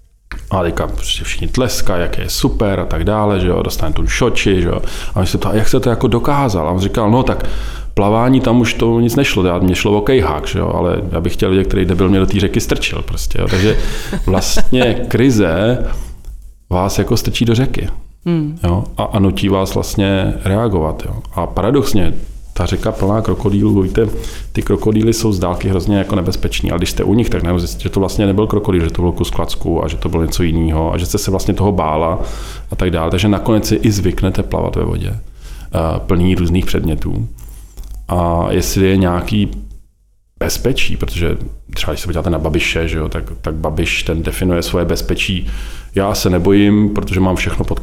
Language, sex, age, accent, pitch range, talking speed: Czech, male, 40-59, native, 90-110 Hz, 200 wpm